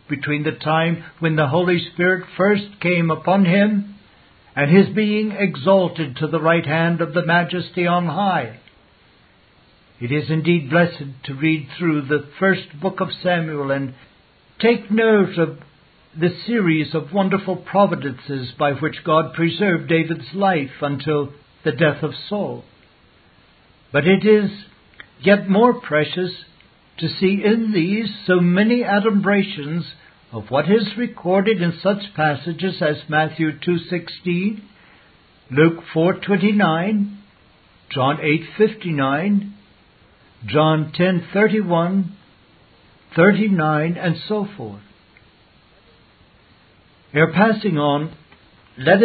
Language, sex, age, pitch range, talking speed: English, male, 60-79, 150-195 Hz, 115 wpm